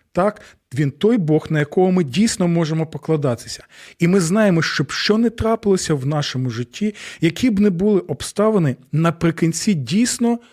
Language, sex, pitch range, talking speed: Ukrainian, male, 130-185 Hz, 160 wpm